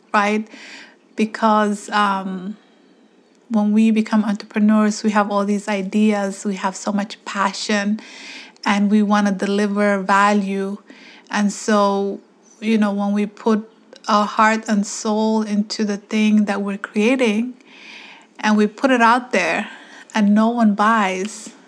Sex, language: female, English